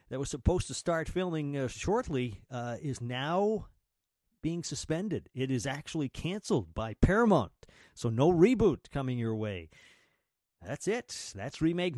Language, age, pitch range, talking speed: English, 50-69, 115-170 Hz, 145 wpm